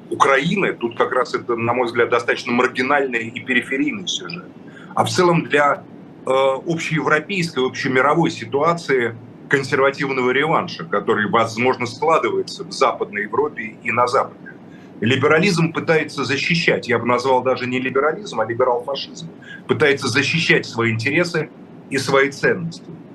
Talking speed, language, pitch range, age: 130 wpm, Russian, 125-155 Hz, 30-49